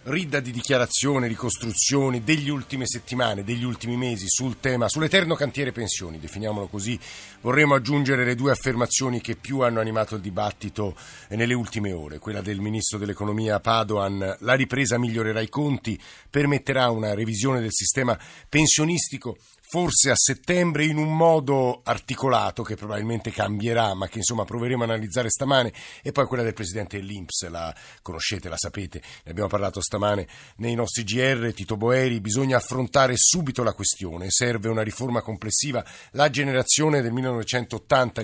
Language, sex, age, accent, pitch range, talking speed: Italian, male, 50-69, native, 105-130 Hz, 150 wpm